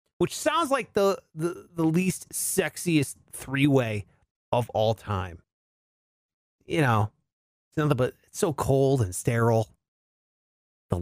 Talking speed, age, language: 125 wpm, 30-49, English